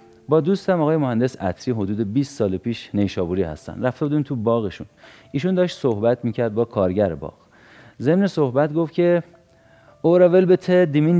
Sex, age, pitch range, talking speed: male, 40-59, 105-155 Hz, 150 wpm